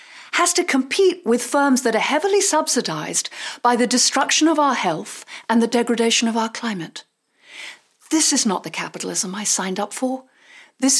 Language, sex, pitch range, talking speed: English, female, 200-275 Hz, 170 wpm